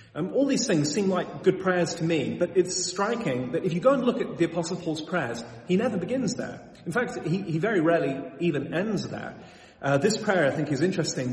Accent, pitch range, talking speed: British, 140-195 Hz, 235 wpm